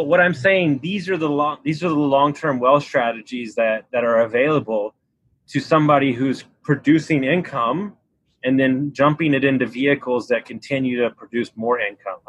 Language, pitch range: English, 130-165 Hz